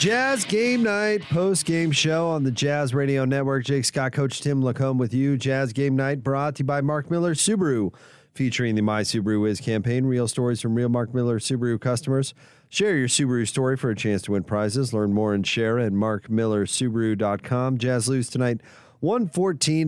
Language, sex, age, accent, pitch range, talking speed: English, male, 40-59, American, 115-140 Hz, 190 wpm